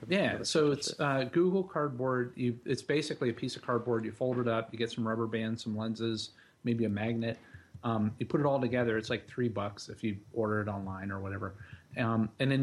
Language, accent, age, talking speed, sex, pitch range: English, American, 40-59, 225 wpm, male, 110-125 Hz